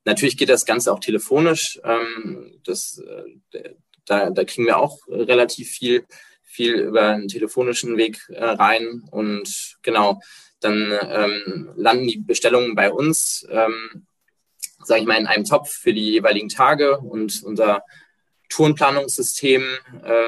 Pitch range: 105-140 Hz